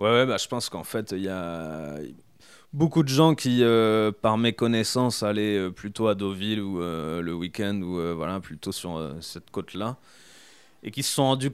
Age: 20-39